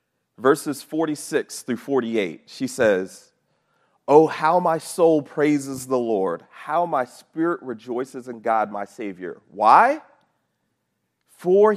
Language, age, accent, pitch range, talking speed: English, 40-59, American, 105-140 Hz, 115 wpm